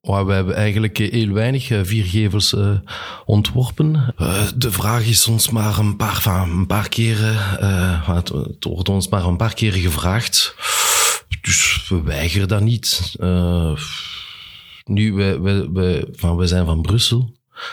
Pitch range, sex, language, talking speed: 90-105 Hz, male, Dutch, 130 wpm